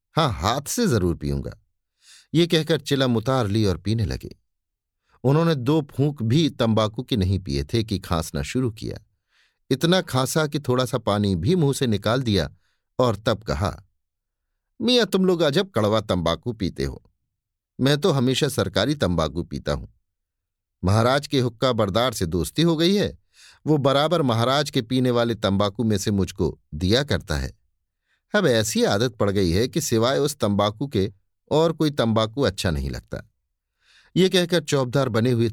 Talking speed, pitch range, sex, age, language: 165 wpm, 95-135 Hz, male, 50-69, Hindi